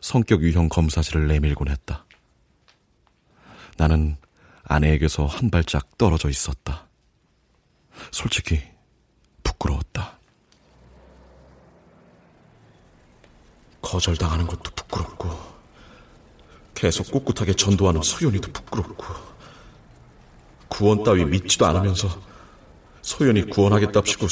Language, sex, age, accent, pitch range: Korean, male, 40-59, native, 80-100 Hz